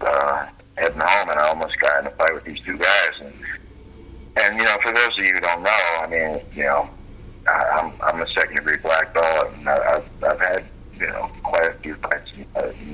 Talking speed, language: 235 wpm, English